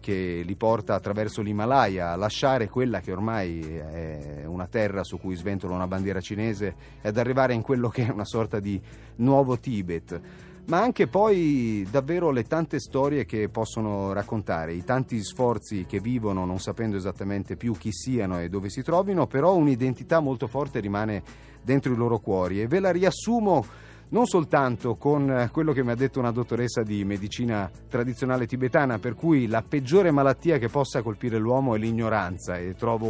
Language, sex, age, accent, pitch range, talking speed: Italian, male, 30-49, native, 100-130 Hz, 170 wpm